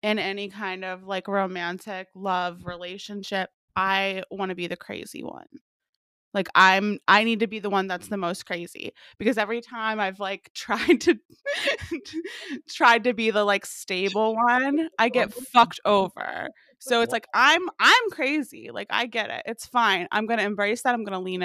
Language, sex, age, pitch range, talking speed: English, female, 20-39, 190-230 Hz, 185 wpm